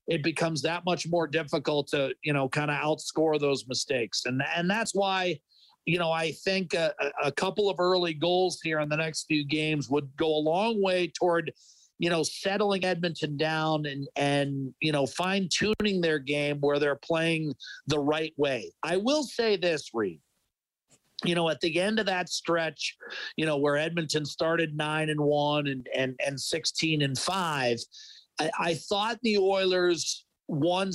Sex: male